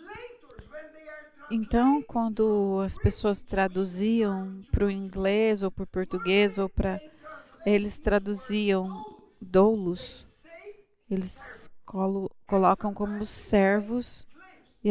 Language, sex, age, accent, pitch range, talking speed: English, female, 30-49, Brazilian, 200-275 Hz, 90 wpm